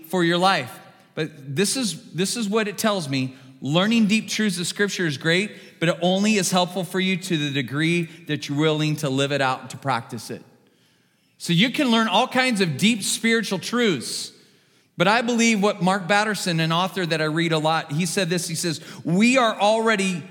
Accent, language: American, English